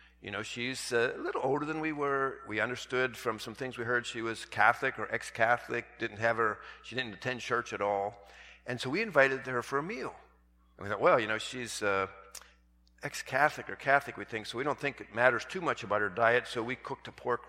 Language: English